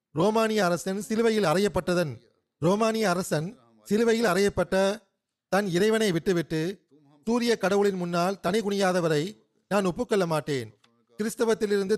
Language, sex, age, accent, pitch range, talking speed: Tamil, male, 40-59, native, 160-210 Hz, 100 wpm